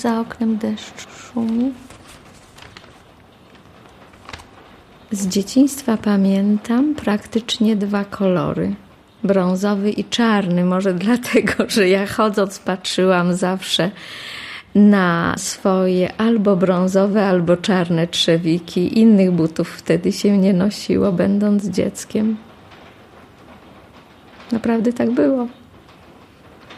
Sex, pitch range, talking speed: female, 195-230 Hz, 85 wpm